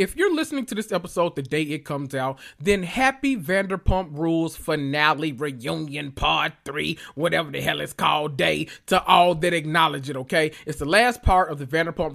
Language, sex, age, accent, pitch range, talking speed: English, male, 20-39, American, 135-180 Hz, 190 wpm